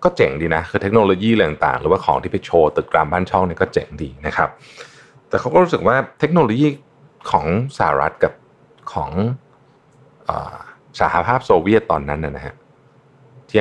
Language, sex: Thai, male